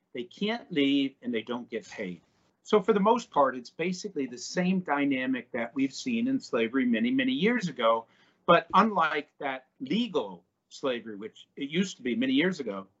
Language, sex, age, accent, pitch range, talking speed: English, male, 50-69, American, 135-190 Hz, 185 wpm